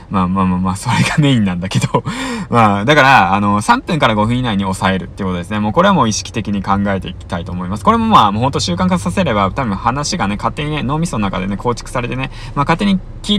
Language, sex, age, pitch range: Japanese, male, 20-39, 100-135 Hz